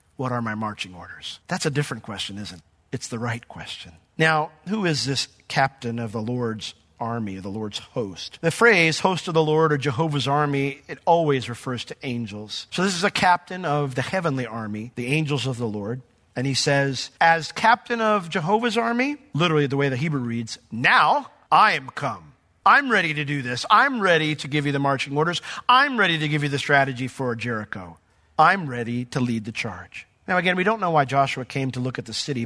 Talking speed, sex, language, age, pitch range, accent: 210 wpm, male, English, 40-59, 120-160 Hz, American